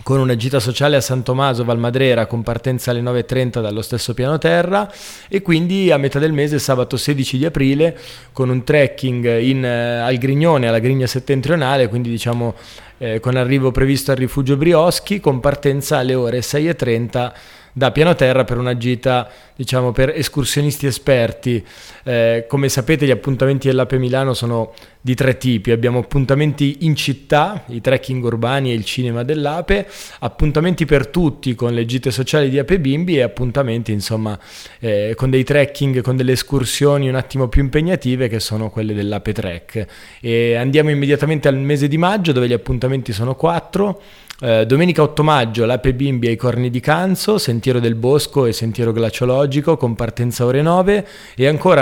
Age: 20-39